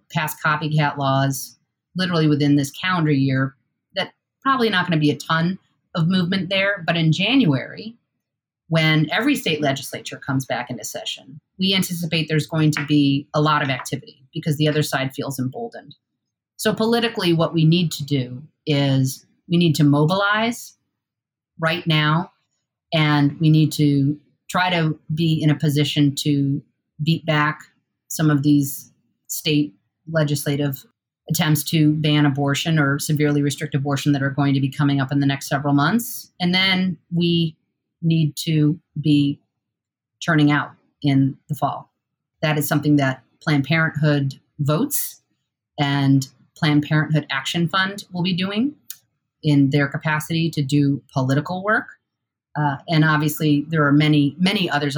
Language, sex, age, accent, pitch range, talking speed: English, female, 40-59, American, 140-165 Hz, 150 wpm